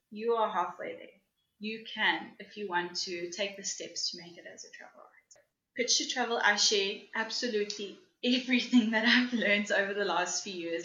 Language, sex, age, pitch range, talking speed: English, female, 10-29, 180-220 Hz, 195 wpm